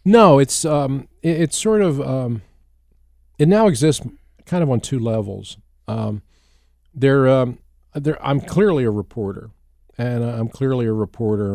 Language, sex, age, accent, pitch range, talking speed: English, male, 50-69, American, 95-120 Hz, 150 wpm